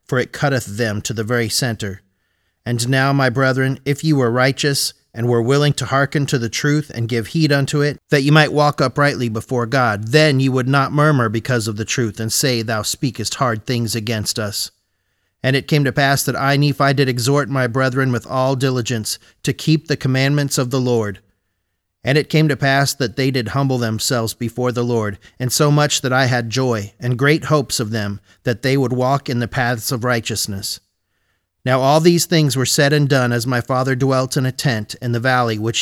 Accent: American